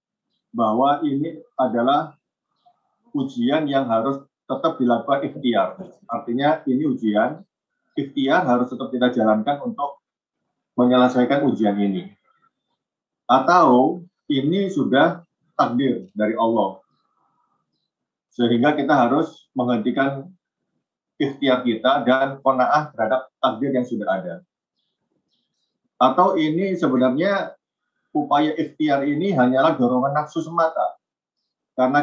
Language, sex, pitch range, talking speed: Indonesian, male, 110-150 Hz, 95 wpm